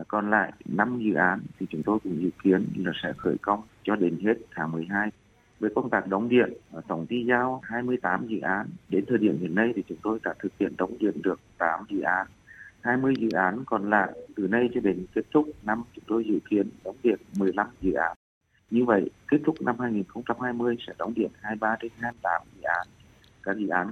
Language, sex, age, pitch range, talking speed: Vietnamese, male, 30-49, 95-115 Hz, 215 wpm